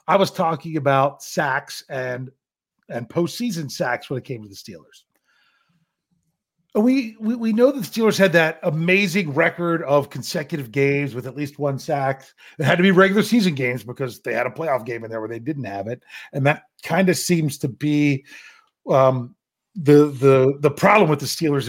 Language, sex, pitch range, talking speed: English, male, 140-190 Hz, 195 wpm